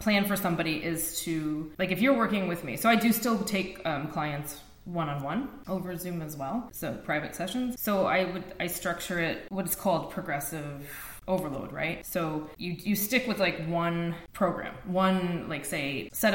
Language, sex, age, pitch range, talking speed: English, female, 20-39, 160-195 Hz, 185 wpm